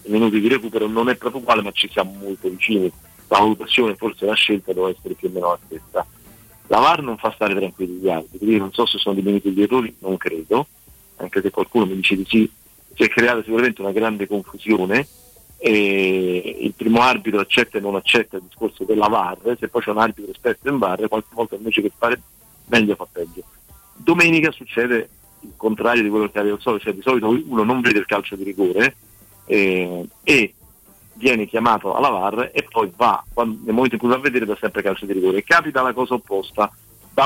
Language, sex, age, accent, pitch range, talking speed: Italian, male, 40-59, native, 95-115 Hz, 210 wpm